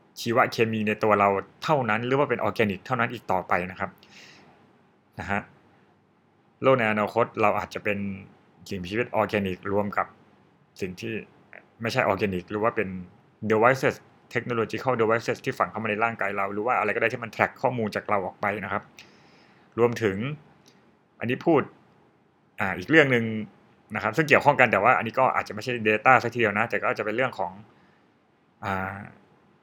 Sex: male